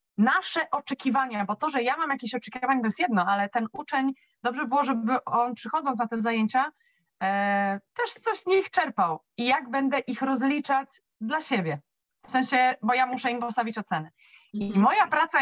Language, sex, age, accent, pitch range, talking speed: Polish, female, 20-39, native, 220-275 Hz, 185 wpm